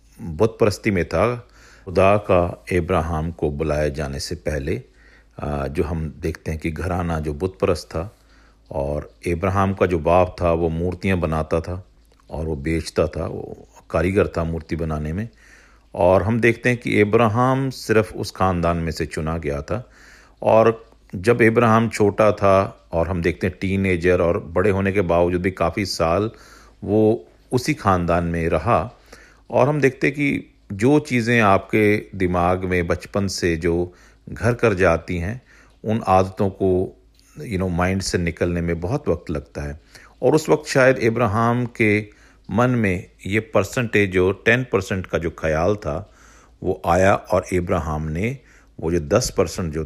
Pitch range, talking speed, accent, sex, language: 85-110 Hz, 160 wpm, native, male, Hindi